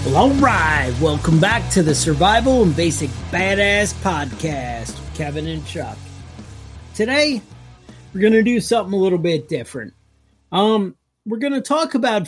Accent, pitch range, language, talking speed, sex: American, 155-195 Hz, English, 150 wpm, male